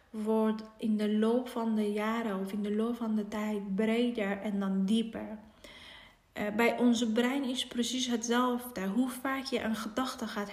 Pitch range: 200-225 Hz